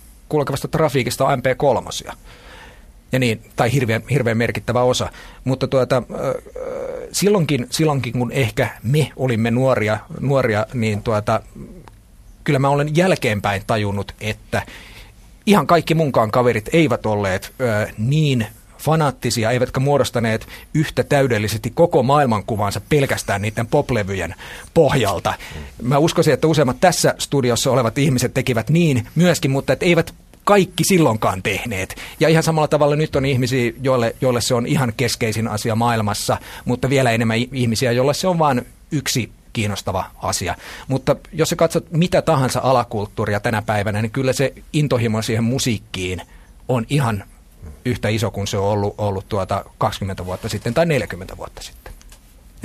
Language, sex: Finnish, male